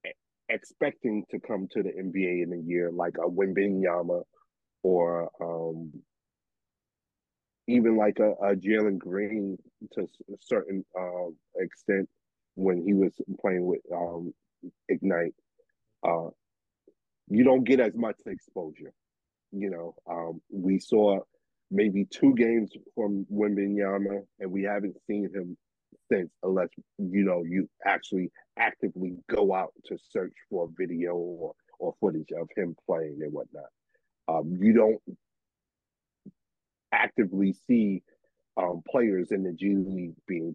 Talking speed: 130 wpm